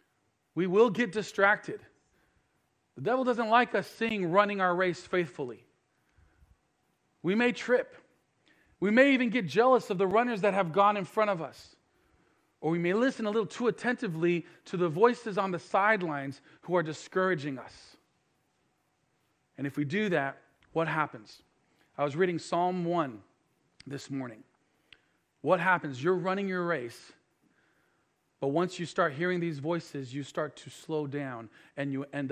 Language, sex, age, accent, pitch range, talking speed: English, male, 40-59, American, 145-195 Hz, 160 wpm